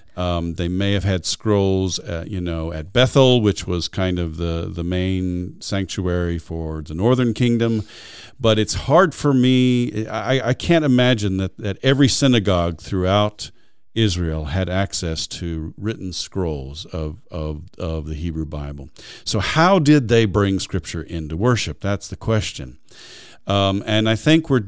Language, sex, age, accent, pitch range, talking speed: English, male, 50-69, American, 85-110 Hz, 160 wpm